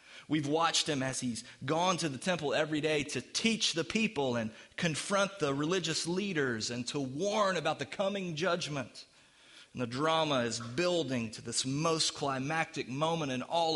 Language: English